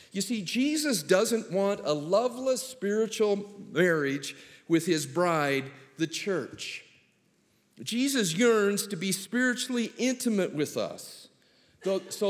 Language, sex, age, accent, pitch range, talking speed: English, male, 50-69, American, 150-205 Hz, 110 wpm